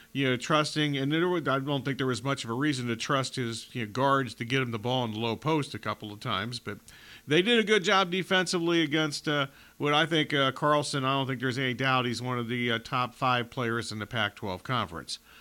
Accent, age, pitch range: American, 50-69, 130-170 Hz